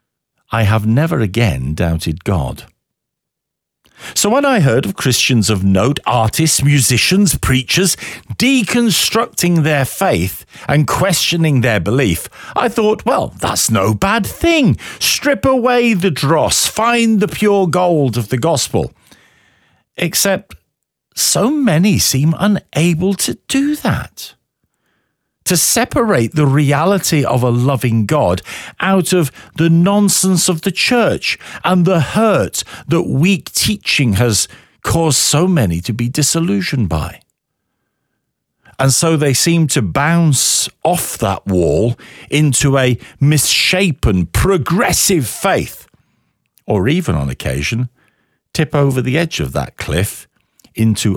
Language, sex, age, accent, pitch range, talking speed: English, male, 50-69, British, 120-185 Hz, 125 wpm